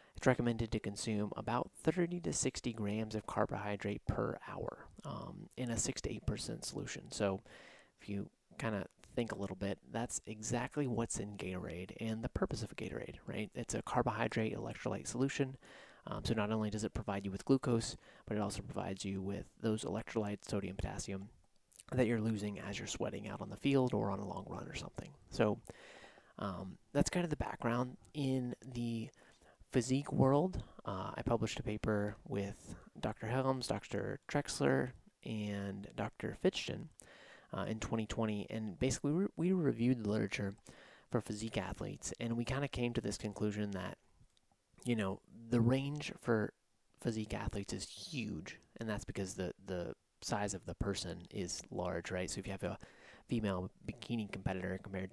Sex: male